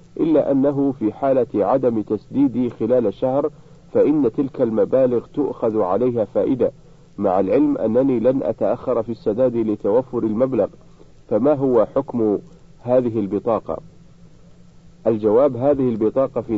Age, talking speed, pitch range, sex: 50-69, 115 wpm, 110-150 Hz, male